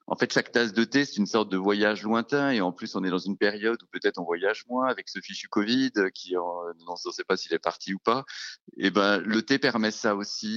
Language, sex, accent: French, male, French